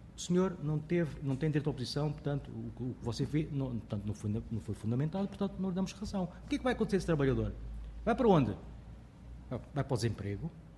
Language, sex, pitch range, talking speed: Portuguese, male, 110-170 Hz, 200 wpm